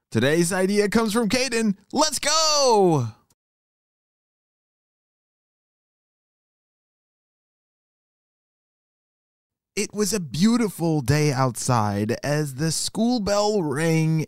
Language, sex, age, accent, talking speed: English, male, 30-49, American, 75 wpm